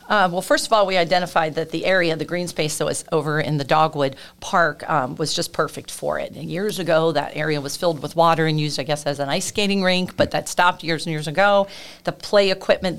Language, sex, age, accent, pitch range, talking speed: English, female, 40-59, American, 150-185 Hz, 250 wpm